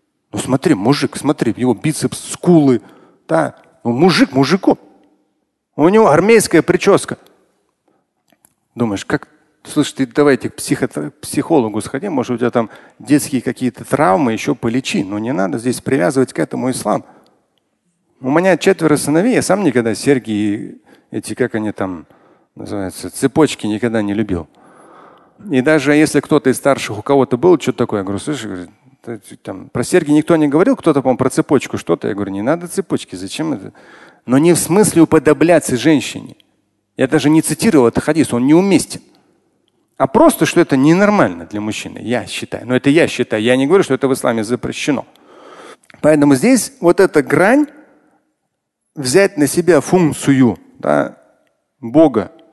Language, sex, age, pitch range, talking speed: Russian, male, 40-59, 120-165 Hz, 155 wpm